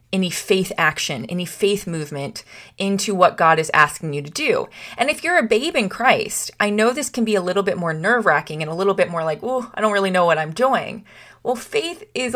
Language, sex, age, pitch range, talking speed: English, female, 30-49, 185-245 Hz, 235 wpm